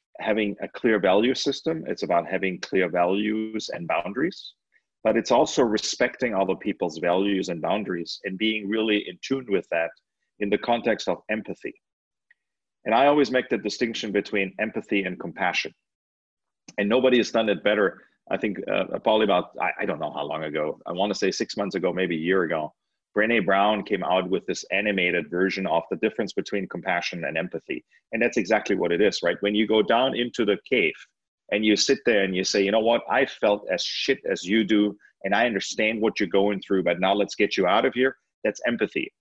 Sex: male